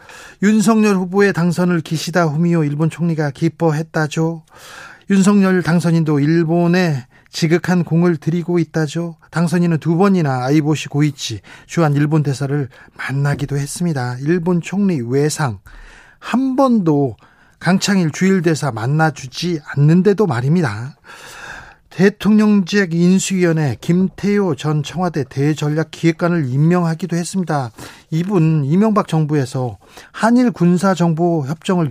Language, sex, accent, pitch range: Korean, male, native, 150-190 Hz